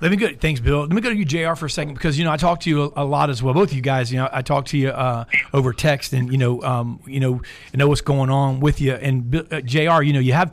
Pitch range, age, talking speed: 135-165 Hz, 40-59, 330 wpm